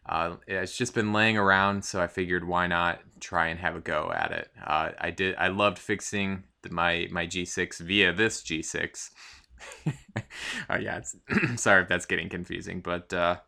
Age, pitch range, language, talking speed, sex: 20-39, 90-100 Hz, English, 175 wpm, male